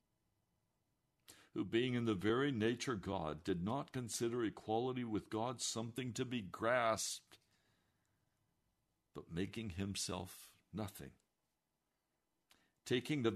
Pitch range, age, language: 85-120 Hz, 60-79, English